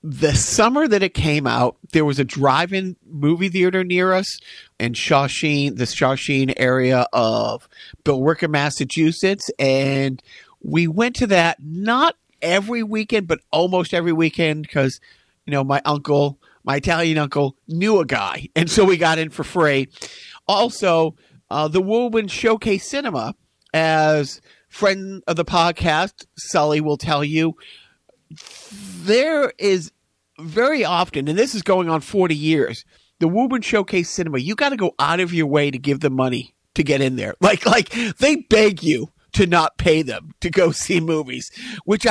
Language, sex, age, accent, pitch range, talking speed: English, male, 50-69, American, 145-195 Hz, 160 wpm